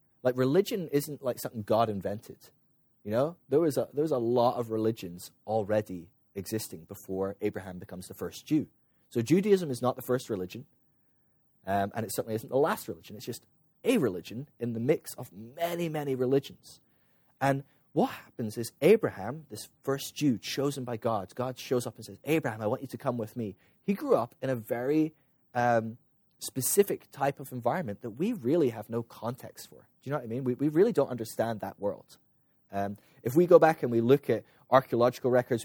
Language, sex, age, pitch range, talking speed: English, male, 20-39, 110-140 Hz, 195 wpm